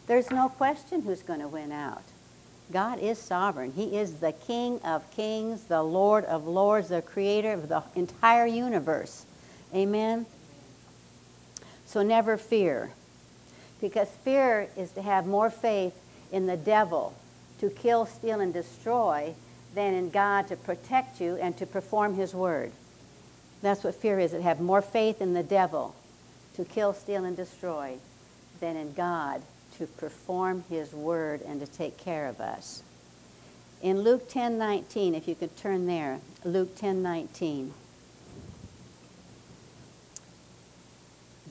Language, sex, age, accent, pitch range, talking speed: English, female, 60-79, American, 165-225 Hz, 140 wpm